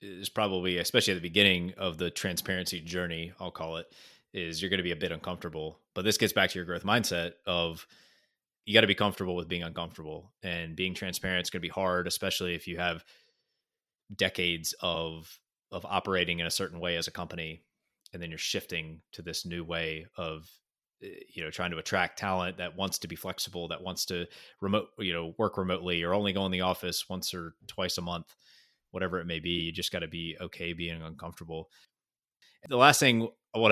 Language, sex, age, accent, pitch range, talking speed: English, male, 20-39, American, 85-95 Hz, 210 wpm